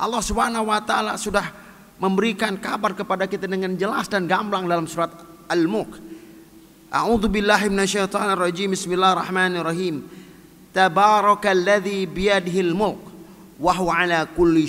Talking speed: 110 wpm